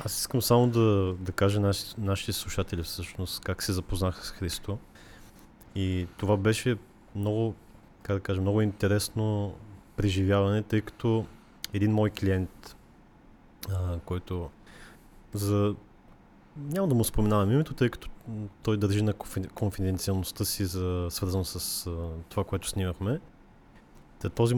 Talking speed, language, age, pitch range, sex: 125 wpm, Bulgarian, 20-39, 95-110 Hz, male